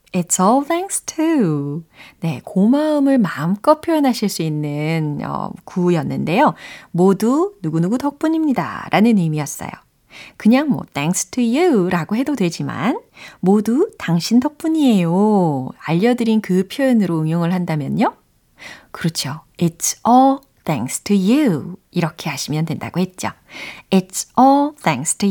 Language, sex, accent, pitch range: Korean, female, native, 165-265 Hz